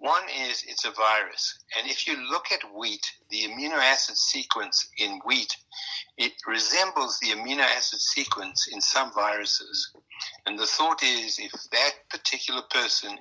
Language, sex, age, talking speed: English, male, 60-79, 155 wpm